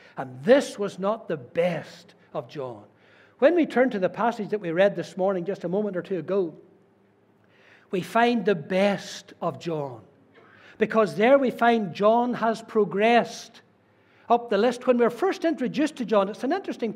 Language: English